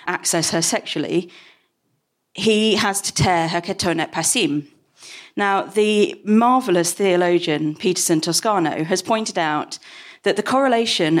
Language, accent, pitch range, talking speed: English, British, 165-220 Hz, 120 wpm